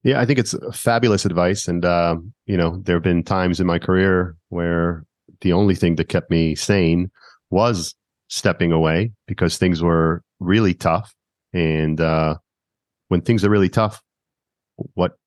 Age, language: 40-59, English